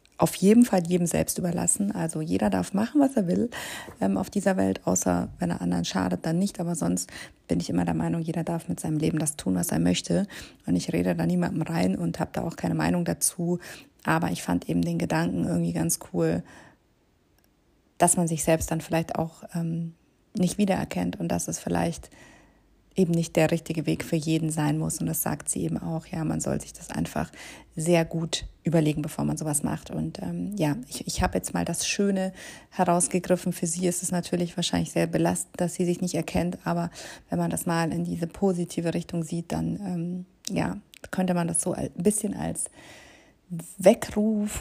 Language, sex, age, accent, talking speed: German, female, 30-49, German, 200 wpm